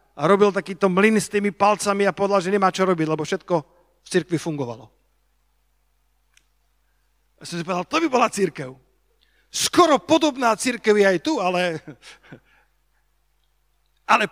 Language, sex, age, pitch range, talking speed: Slovak, male, 50-69, 190-245 Hz, 145 wpm